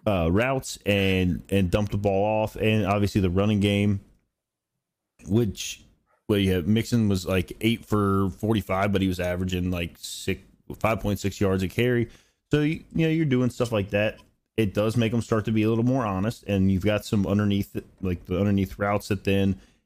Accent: American